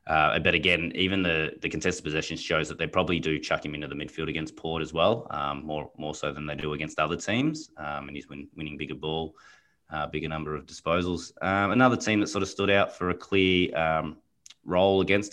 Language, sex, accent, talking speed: English, male, Australian, 230 wpm